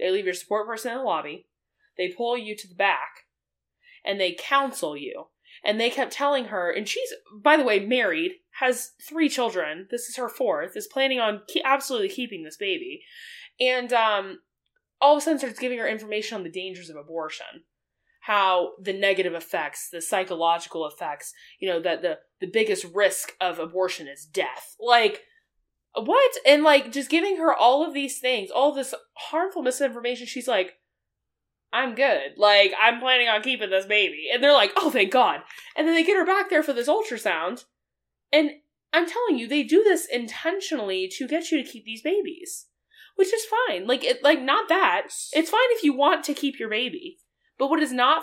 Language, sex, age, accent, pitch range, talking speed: English, female, 20-39, American, 215-335 Hz, 195 wpm